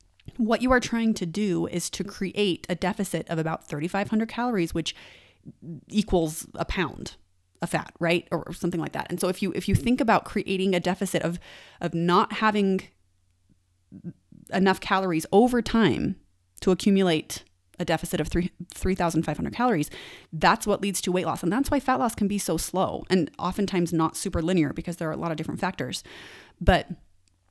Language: English